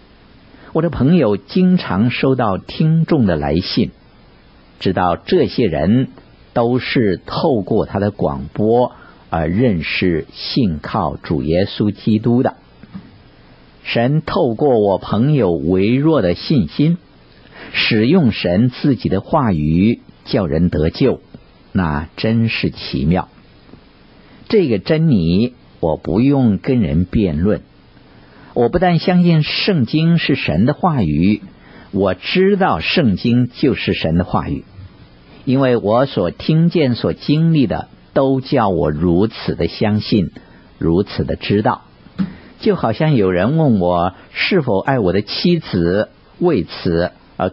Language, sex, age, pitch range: Chinese, male, 50-69, 90-140 Hz